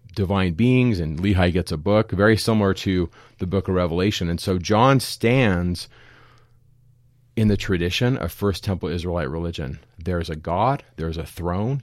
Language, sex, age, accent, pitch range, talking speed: English, male, 30-49, American, 90-115 Hz, 160 wpm